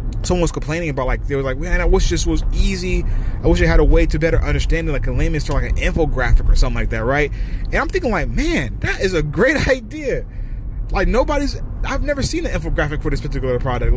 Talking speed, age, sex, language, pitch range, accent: 240 wpm, 20-39, male, English, 110-155 Hz, American